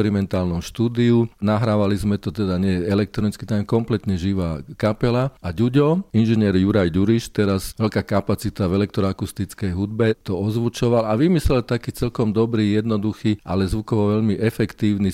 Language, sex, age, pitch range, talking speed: Slovak, male, 40-59, 95-120 Hz, 140 wpm